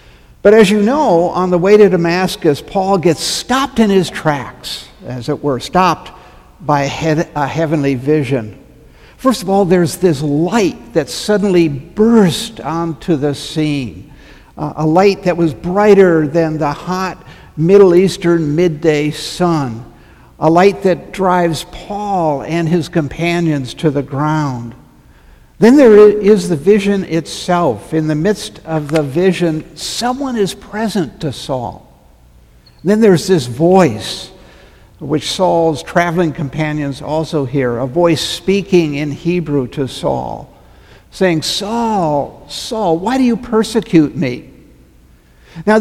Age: 60-79